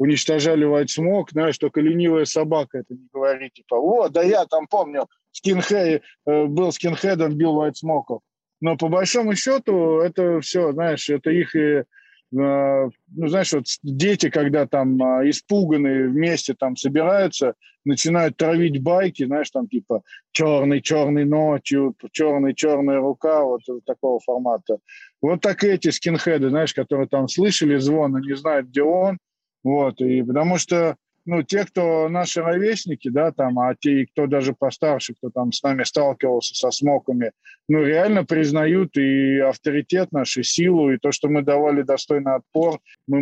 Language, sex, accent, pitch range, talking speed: Russian, male, native, 135-170 Hz, 155 wpm